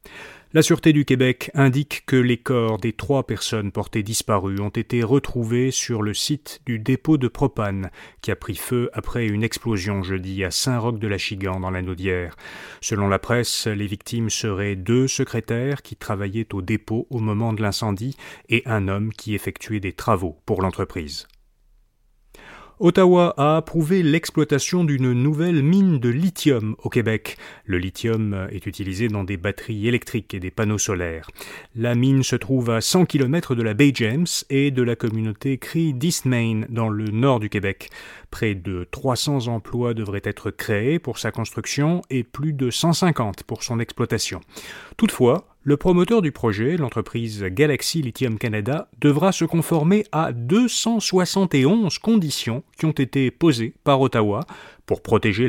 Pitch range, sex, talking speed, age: 105-145 Hz, male, 160 wpm, 30-49